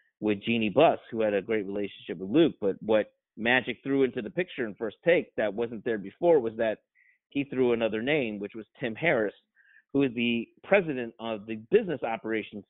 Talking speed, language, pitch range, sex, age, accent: 200 wpm, English, 110-130 Hz, male, 30-49, American